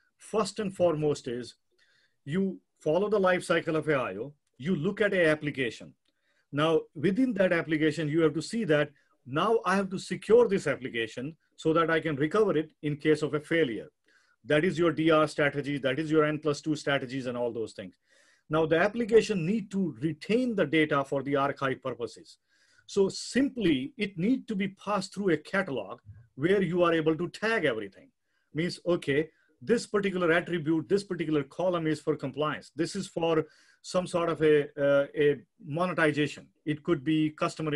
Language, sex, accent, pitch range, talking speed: English, male, Indian, 145-185 Hz, 180 wpm